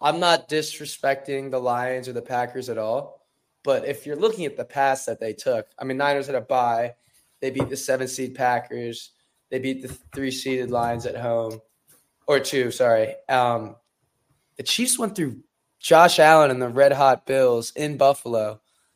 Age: 20-39